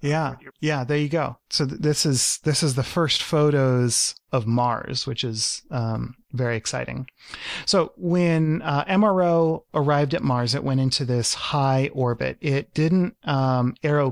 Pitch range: 120-145 Hz